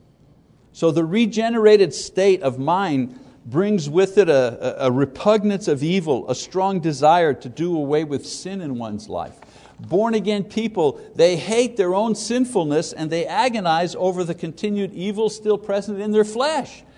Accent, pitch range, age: American, 135-200 Hz, 60-79